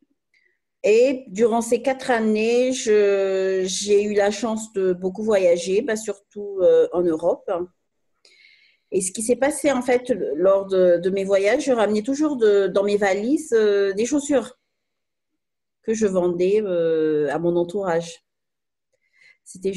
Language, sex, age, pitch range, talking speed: French, female, 40-59, 190-260 Hz, 135 wpm